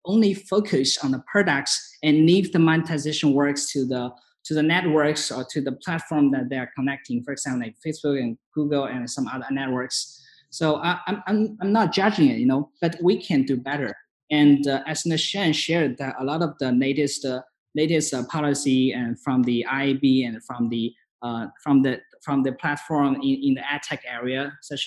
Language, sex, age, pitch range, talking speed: English, male, 20-39, 125-155 Hz, 200 wpm